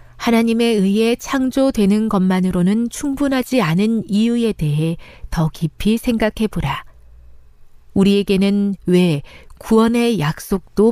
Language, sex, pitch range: Korean, female, 150-230 Hz